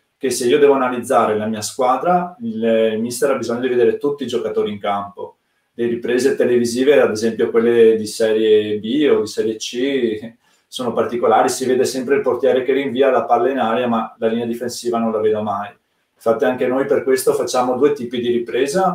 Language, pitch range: Italian, 115-175 Hz